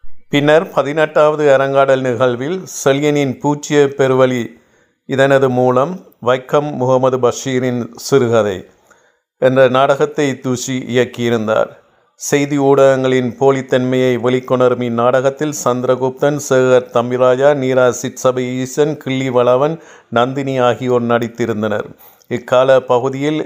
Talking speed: 85 wpm